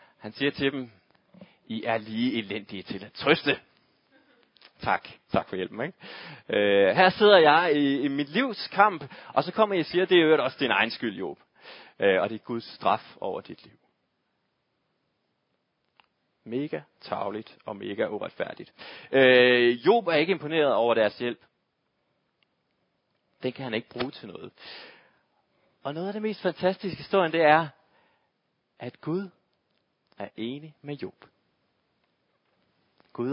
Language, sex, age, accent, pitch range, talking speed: Danish, male, 30-49, native, 125-185 Hz, 150 wpm